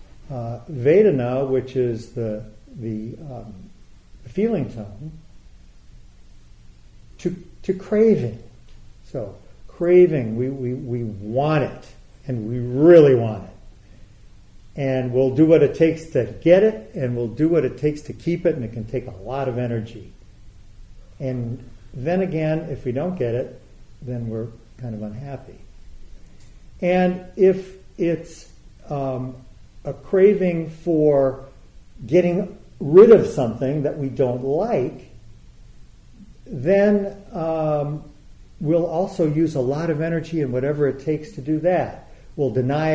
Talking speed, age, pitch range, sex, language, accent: 135 wpm, 50-69, 115-160 Hz, male, English, American